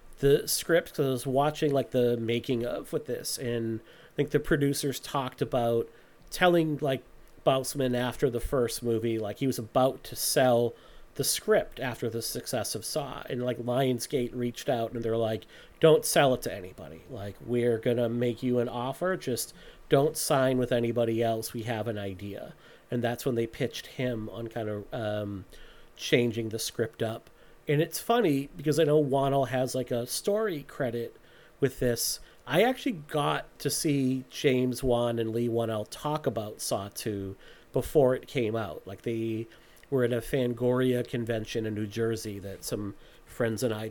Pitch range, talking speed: 115-140 Hz, 180 wpm